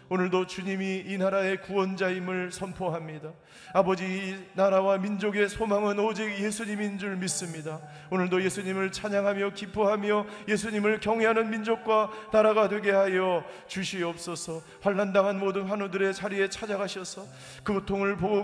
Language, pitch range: Korean, 130-195 Hz